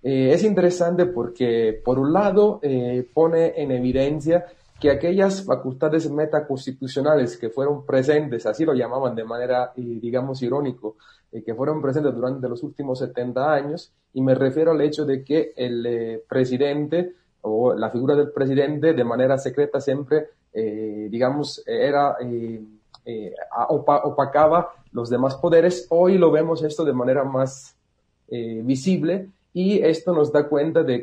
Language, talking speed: Spanish, 155 wpm